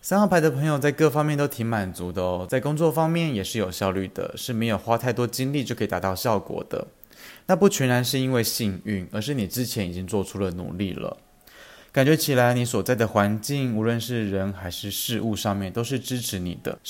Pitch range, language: 95-130 Hz, Chinese